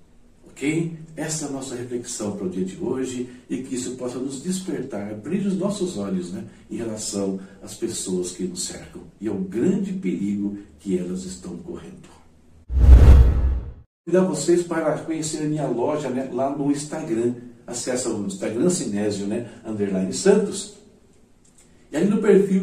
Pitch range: 115-180 Hz